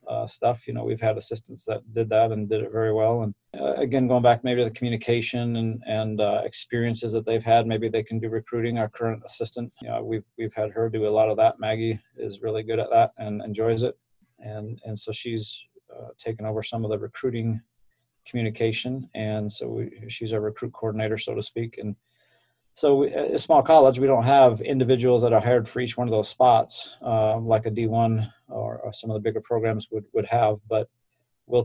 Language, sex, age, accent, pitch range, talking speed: English, male, 30-49, American, 110-120 Hz, 220 wpm